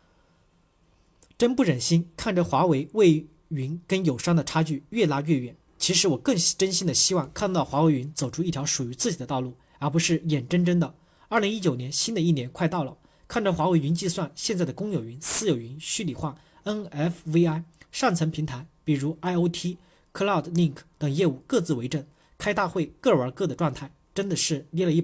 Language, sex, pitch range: Chinese, male, 145-175 Hz